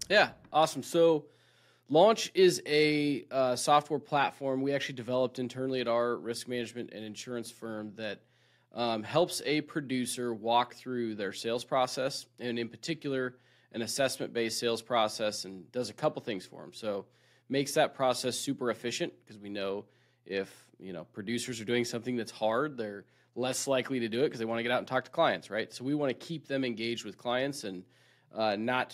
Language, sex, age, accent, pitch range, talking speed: English, male, 20-39, American, 115-135 Hz, 190 wpm